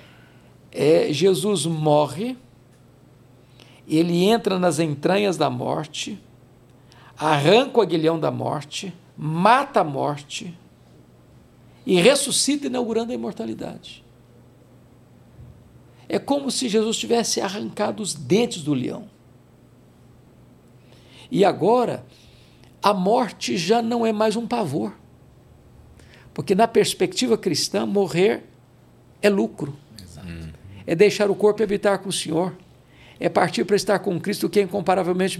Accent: Brazilian